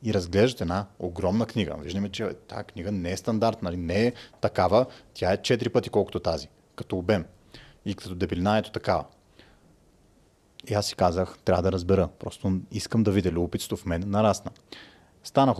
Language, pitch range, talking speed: Bulgarian, 95-115 Hz, 175 wpm